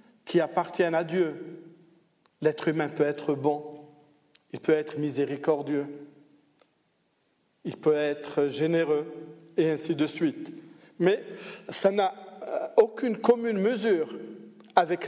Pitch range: 155-220 Hz